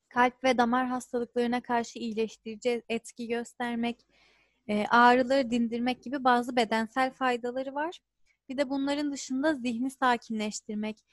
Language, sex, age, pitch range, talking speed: Turkish, female, 30-49, 215-260 Hz, 115 wpm